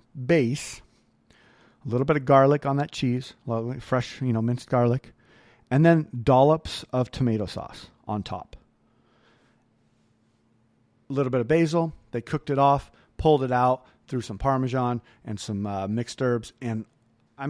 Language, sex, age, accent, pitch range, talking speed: English, male, 40-59, American, 115-145 Hz, 150 wpm